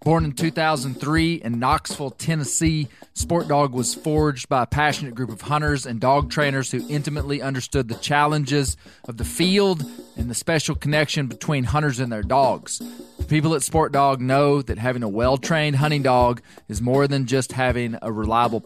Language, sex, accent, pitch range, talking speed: English, male, American, 125-155 Hz, 175 wpm